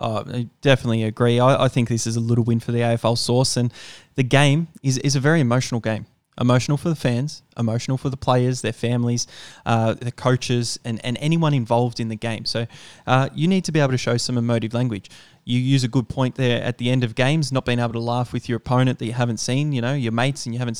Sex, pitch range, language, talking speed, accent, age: male, 115-135 Hz, English, 250 wpm, Australian, 20-39